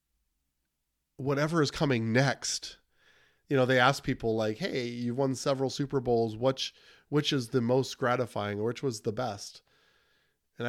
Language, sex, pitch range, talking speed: English, male, 110-140 Hz, 155 wpm